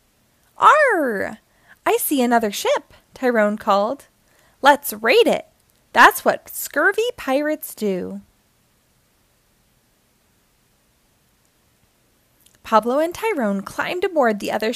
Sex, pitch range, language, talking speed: female, 210-310 Hz, English, 90 wpm